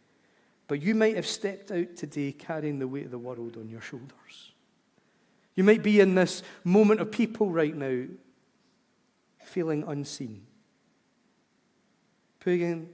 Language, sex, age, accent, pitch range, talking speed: English, male, 40-59, British, 150-180 Hz, 135 wpm